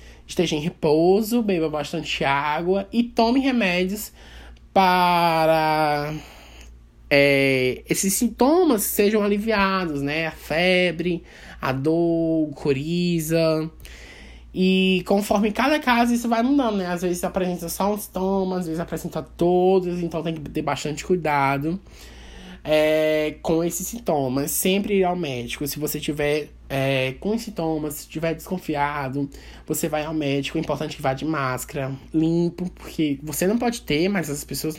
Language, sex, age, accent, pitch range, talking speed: Portuguese, male, 20-39, Brazilian, 140-185 Hz, 140 wpm